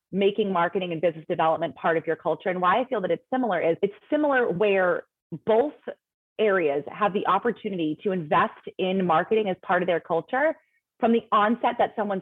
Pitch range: 175-225 Hz